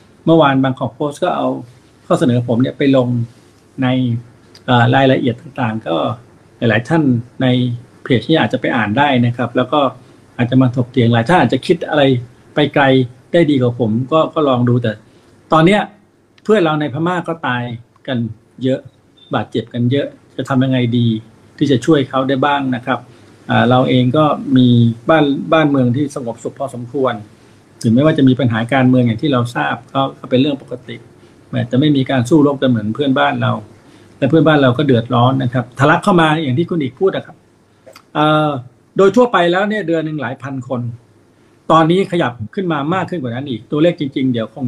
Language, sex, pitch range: Thai, male, 120-150 Hz